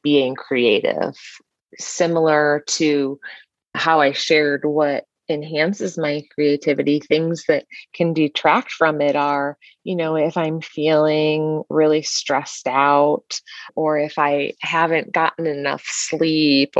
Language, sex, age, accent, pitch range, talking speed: English, female, 30-49, American, 150-180 Hz, 120 wpm